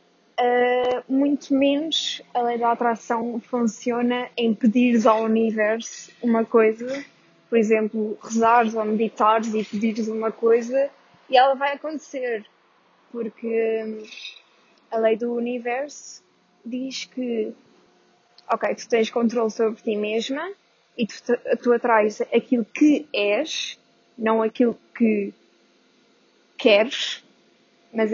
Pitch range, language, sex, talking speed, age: 220-245 Hz, Portuguese, female, 110 wpm, 20-39